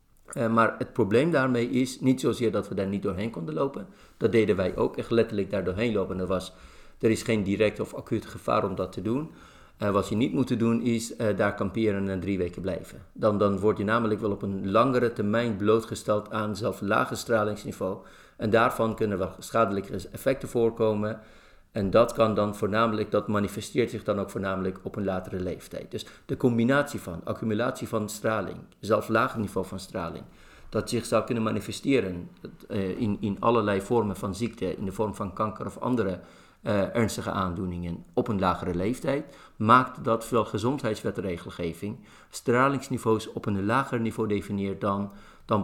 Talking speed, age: 180 wpm, 50-69